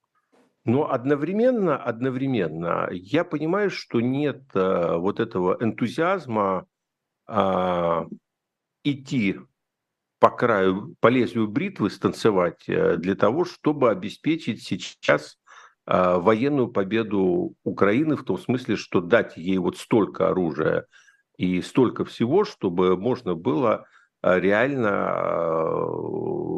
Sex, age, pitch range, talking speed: male, 60-79, 95-145 Hz, 105 wpm